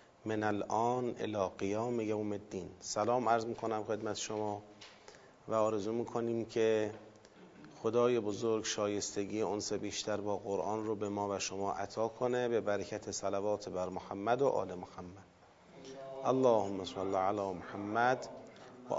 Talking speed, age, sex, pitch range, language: 135 wpm, 30-49, male, 105-125 Hz, Persian